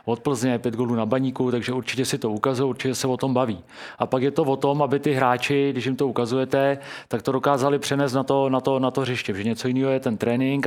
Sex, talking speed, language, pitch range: male, 260 wpm, Czech, 125-140 Hz